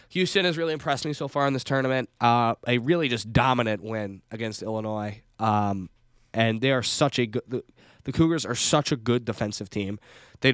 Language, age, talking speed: English, 10-29, 195 wpm